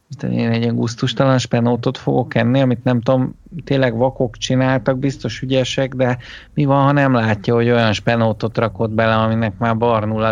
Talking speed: 170 wpm